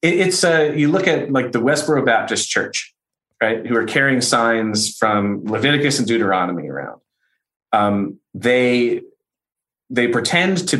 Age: 30-49